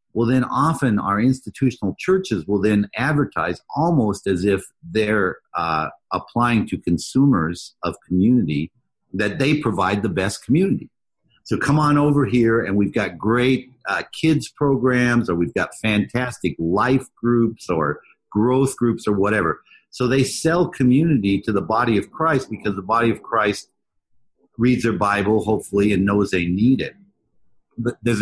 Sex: male